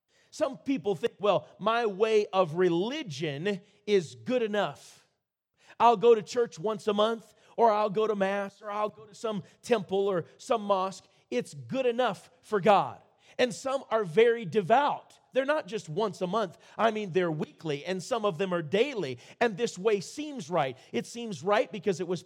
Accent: American